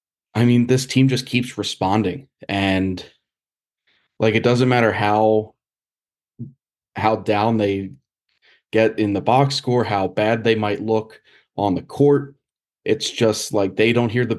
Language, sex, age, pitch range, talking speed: English, male, 20-39, 105-125 Hz, 150 wpm